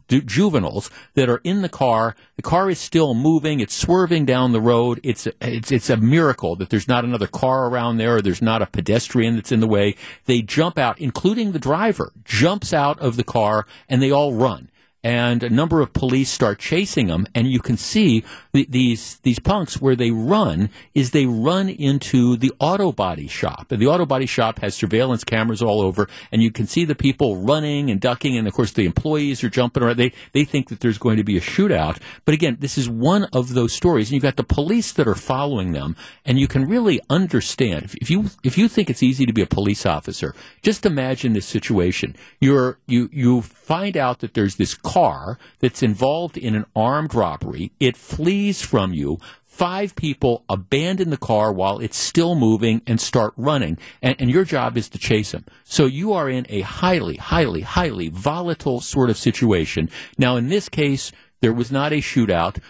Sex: male